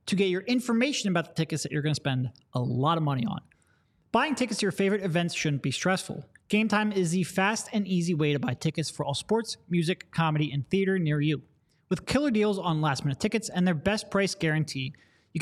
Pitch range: 155-210 Hz